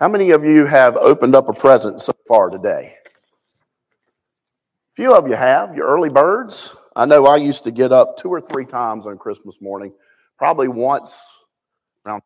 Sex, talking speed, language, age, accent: male, 175 wpm, English, 50-69, American